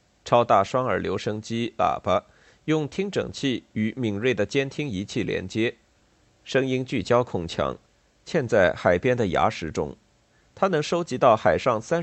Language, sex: Chinese, male